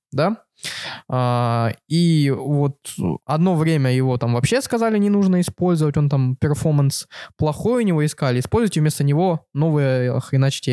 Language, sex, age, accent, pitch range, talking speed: Russian, male, 20-39, native, 130-165 Hz, 130 wpm